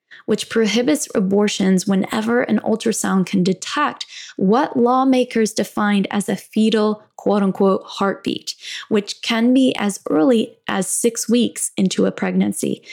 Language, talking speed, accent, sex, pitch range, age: English, 125 wpm, American, female, 200-255 Hz, 10-29